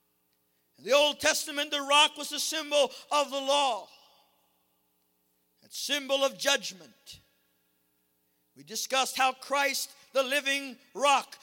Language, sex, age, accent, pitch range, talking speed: English, male, 50-69, American, 235-285 Hz, 115 wpm